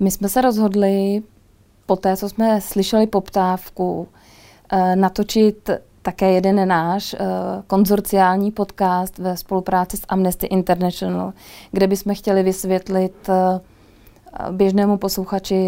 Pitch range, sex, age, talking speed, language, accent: 190-210 Hz, female, 20-39, 105 wpm, Czech, native